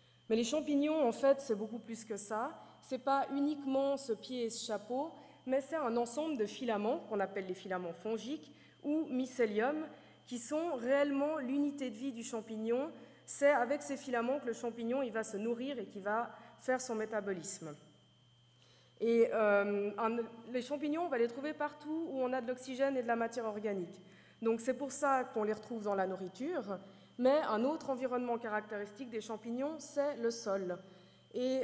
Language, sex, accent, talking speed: French, female, French, 185 wpm